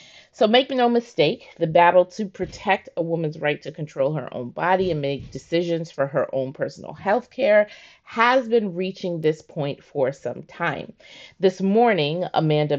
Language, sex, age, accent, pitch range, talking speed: English, female, 30-49, American, 140-190 Hz, 170 wpm